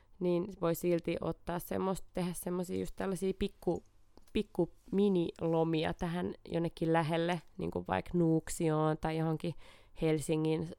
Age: 20-39